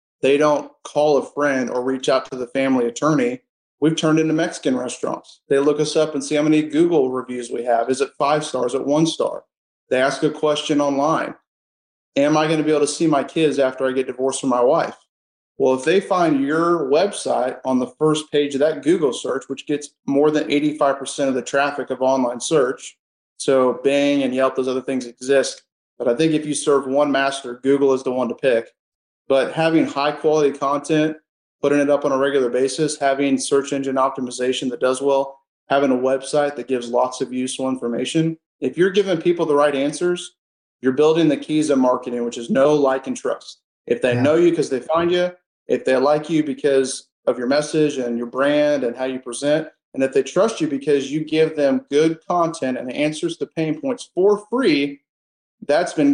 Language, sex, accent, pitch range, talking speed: English, male, American, 130-155 Hz, 210 wpm